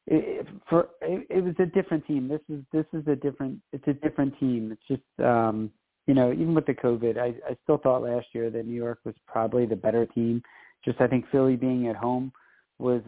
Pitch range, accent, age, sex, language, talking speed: 120-135 Hz, American, 40-59, male, English, 225 wpm